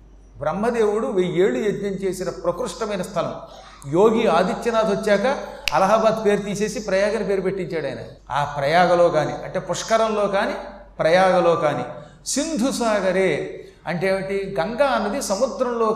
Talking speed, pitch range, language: 115 wpm, 165-220 Hz, Telugu